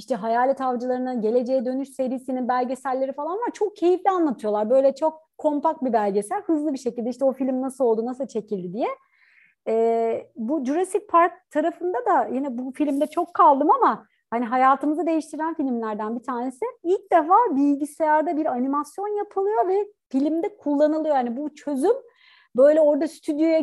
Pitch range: 245-320 Hz